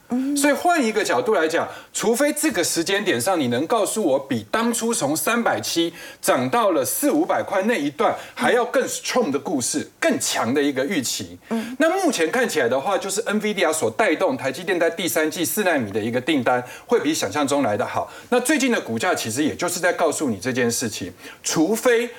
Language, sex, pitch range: Chinese, male, 175-285 Hz